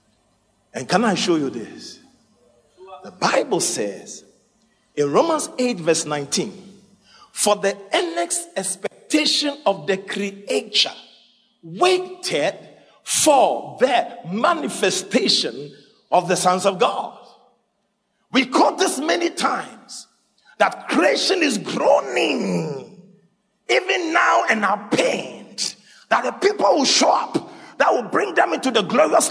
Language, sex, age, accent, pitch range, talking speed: English, male, 50-69, Nigerian, 195-285 Hz, 115 wpm